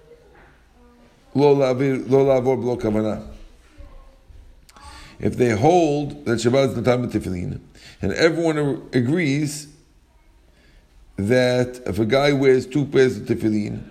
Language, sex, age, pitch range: English, male, 50-69, 115-150 Hz